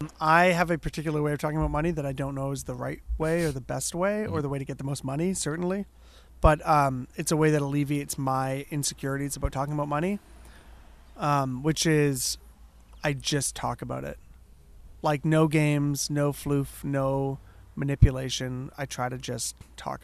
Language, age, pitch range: English, 30-49, 125-165 Hz